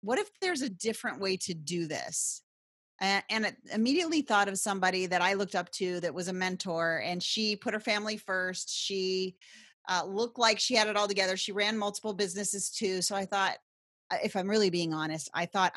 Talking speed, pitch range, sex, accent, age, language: 210 wpm, 175-210 Hz, female, American, 30-49, English